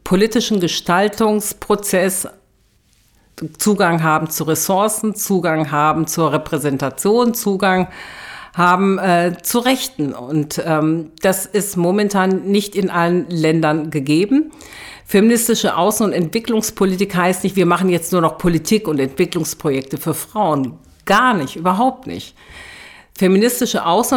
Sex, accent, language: female, German, German